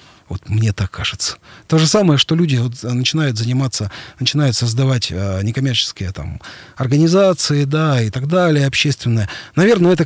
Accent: native